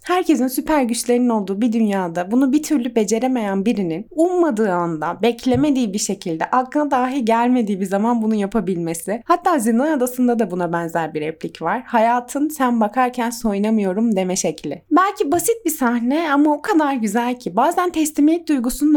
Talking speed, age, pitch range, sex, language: 160 wpm, 20-39, 200-255 Hz, female, Turkish